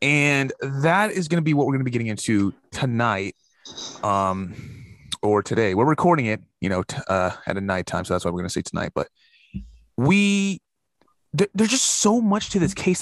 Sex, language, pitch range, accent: male, English, 115-175 Hz, American